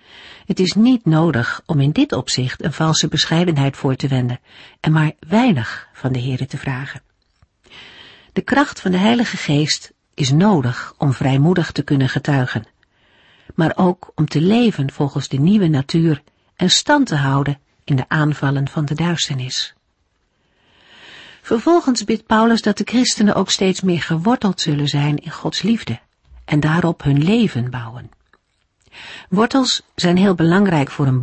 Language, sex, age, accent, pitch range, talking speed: Dutch, female, 50-69, Dutch, 140-190 Hz, 155 wpm